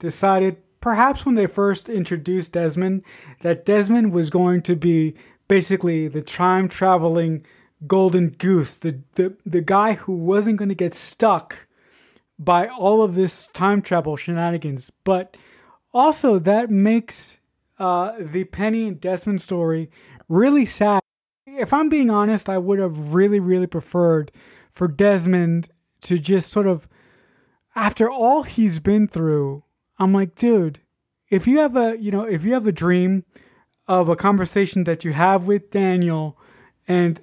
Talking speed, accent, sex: 145 wpm, American, male